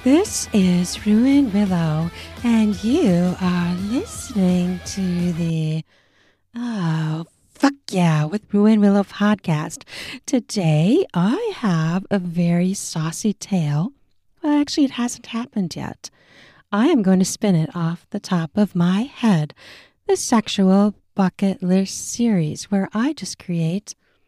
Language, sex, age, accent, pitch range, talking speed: English, female, 40-59, American, 165-225 Hz, 125 wpm